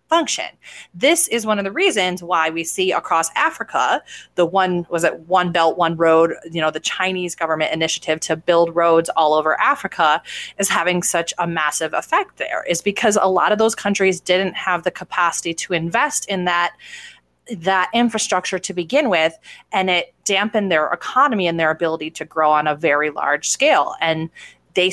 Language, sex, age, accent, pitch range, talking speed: English, female, 30-49, American, 165-200 Hz, 185 wpm